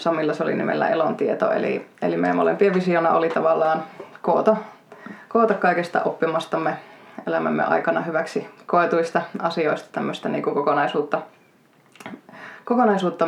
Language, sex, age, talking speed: Finnish, female, 20-39, 110 wpm